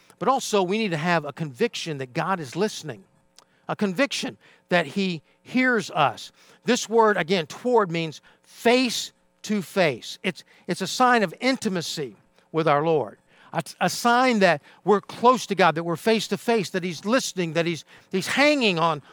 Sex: male